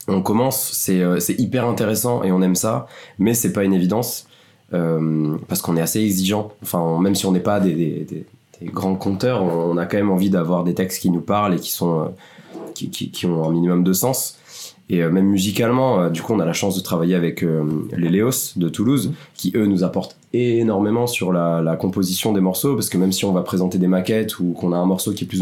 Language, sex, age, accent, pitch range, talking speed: French, male, 20-39, French, 90-110 Hz, 250 wpm